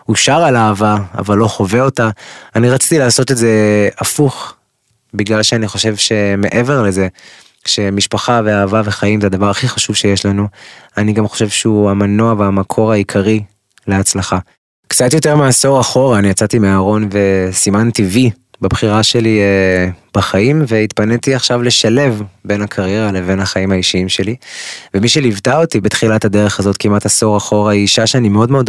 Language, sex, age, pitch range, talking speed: Hebrew, male, 20-39, 100-115 Hz, 150 wpm